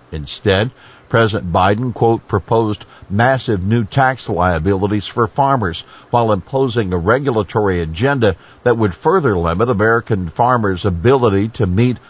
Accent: American